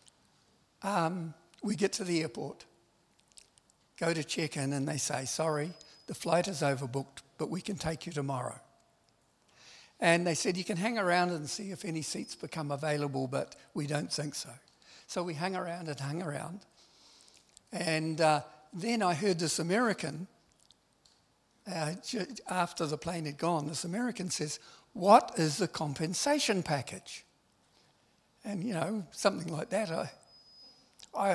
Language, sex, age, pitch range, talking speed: English, male, 60-79, 145-180 Hz, 150 wpm